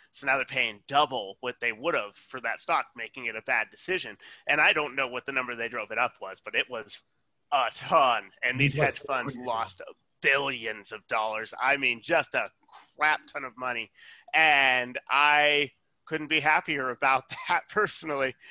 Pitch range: 125-150 Hz